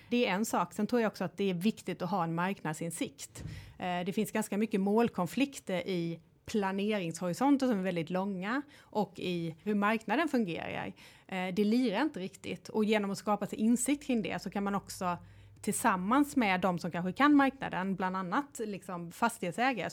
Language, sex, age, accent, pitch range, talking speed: English, female, 30-49, Swedish, 180-215 Hz, 175 wpm